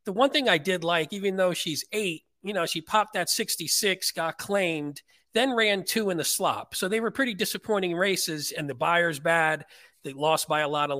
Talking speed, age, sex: 220 wpm, 40-59, male